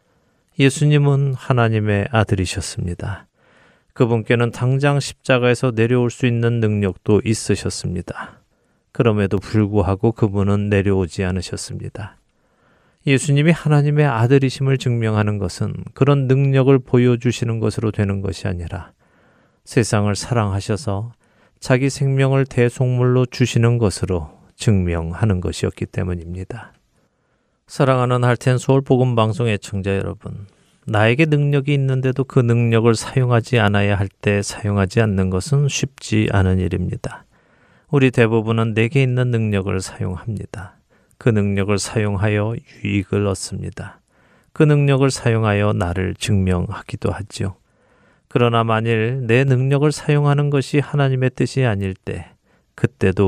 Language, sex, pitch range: Korean, male, 100-130 Hz